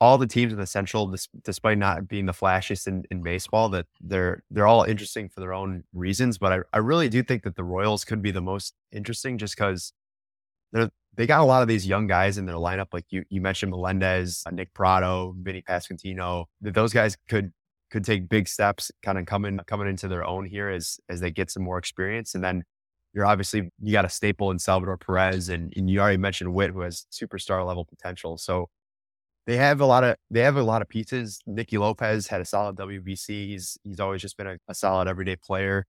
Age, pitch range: 20-39, 90-105 Hz